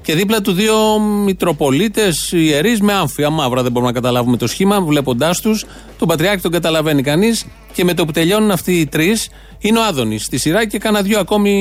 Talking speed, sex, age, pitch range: 200 wpm, male, 30-49, 135-195 Hz